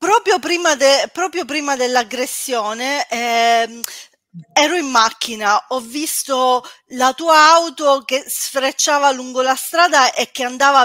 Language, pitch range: Italian, 235-300 Hz